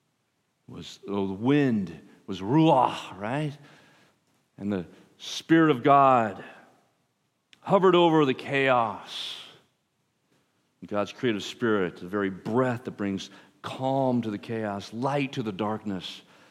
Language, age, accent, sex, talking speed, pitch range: English, 40-59, American, male, 115 wpm, 115-165 Hz